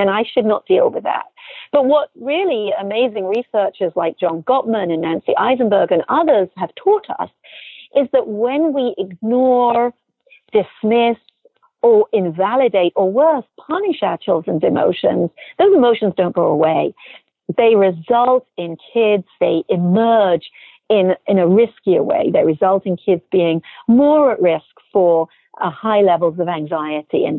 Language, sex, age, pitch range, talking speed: English, female, 50-69, 190-260 Hz, 150 wpm